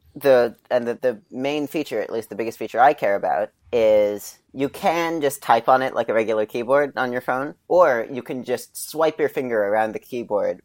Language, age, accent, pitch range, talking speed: English, 30-49, American, 105-130 Hz, 215 wpm